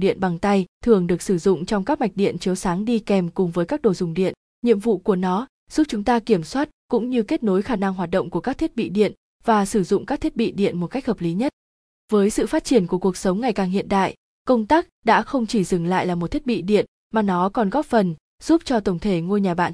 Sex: female